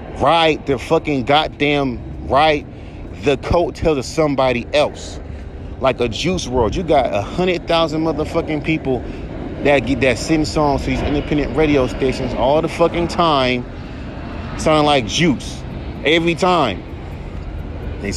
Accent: American